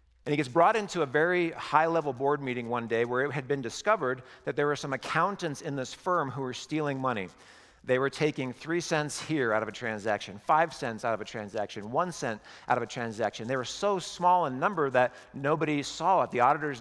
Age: 50-69